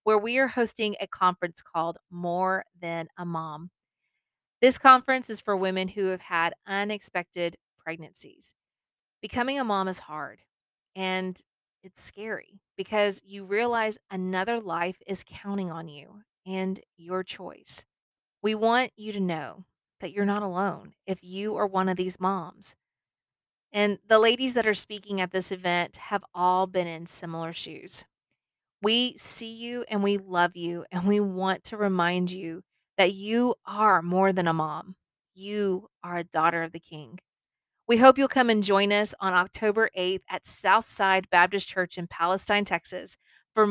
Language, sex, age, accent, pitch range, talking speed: English, female, 30-49, American, 180-210 Hz, 160 wpm